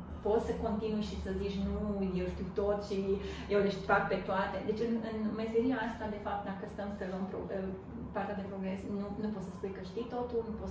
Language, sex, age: Romanian, female, 30-49